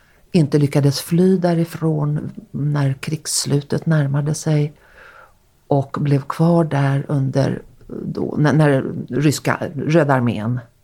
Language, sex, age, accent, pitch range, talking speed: Swedish, female, 40-59, native, 130-170 Hz, 105 wpm